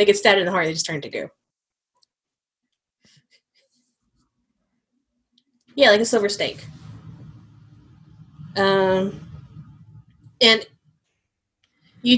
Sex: female